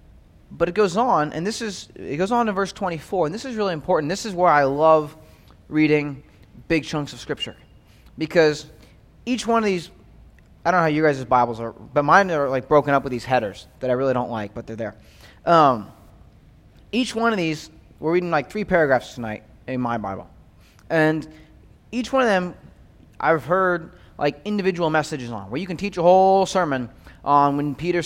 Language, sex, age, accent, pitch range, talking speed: English, male, 20-39, American, 140-195 Hz, 200 wpm